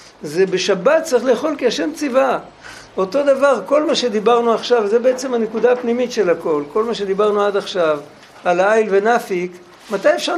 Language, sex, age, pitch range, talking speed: Hebrew, male, 60-79, 180-230 Hz, 170 wpm